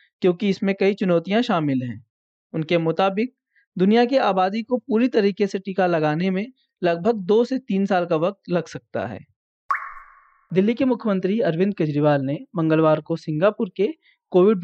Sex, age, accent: male, 20-39, native